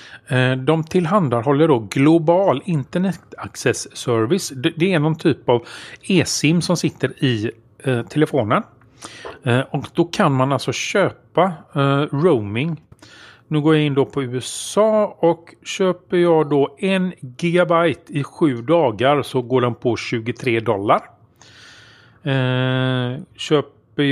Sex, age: male, 40-59